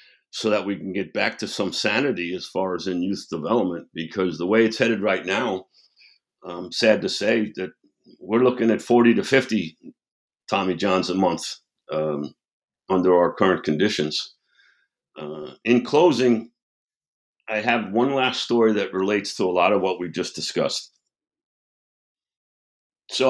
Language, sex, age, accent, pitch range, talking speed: English, male, 60-79, American, 90-115 Hz, 155 wpm